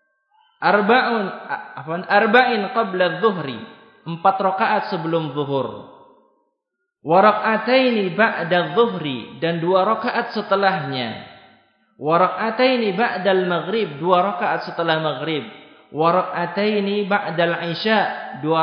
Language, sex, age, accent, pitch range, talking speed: Indonesian, male, 20-39, native, 125-205 Hz, 90 wpm